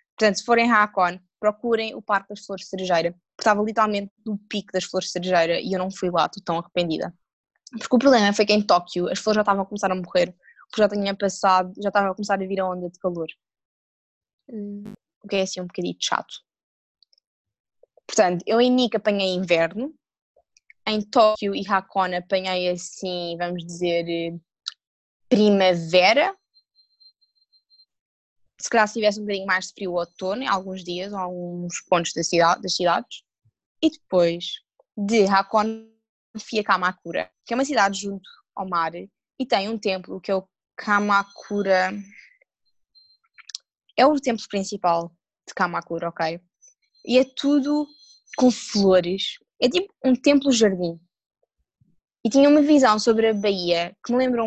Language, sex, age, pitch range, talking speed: English, female, 20-39, 180-225 Hz, 160 wpm